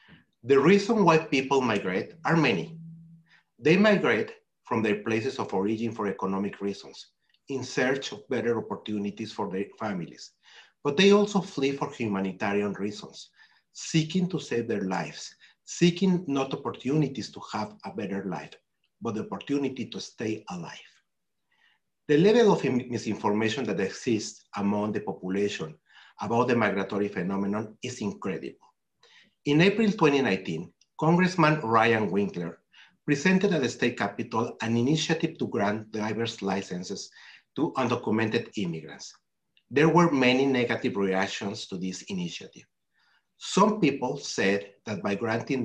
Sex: male